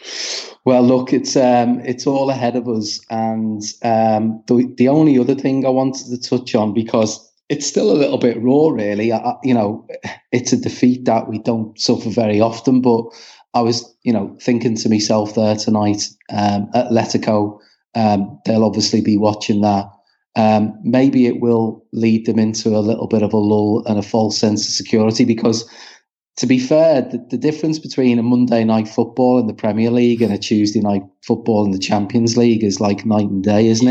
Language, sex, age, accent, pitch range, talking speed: English, male, 30-49, British, 105-125 Hz, 195 wpm